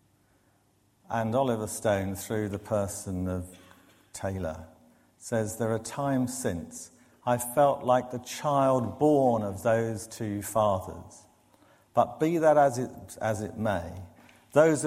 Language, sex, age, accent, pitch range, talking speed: English, male, 50-69, British, 100-130 Hz, 125 wpm